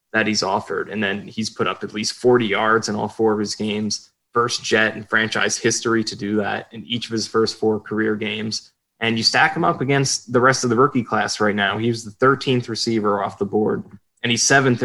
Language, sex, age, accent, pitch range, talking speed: English, male, 20-39, American, 105-120 Hz, 240 wpm